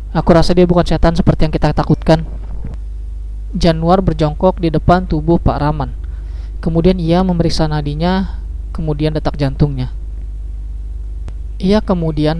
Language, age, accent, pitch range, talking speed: Indonesian, 20-39, native, 115-170 Hz, 120 wpm